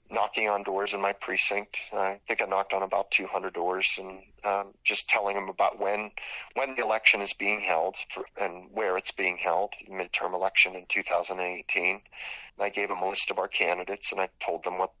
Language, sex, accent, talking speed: English, male, American, 195 wpm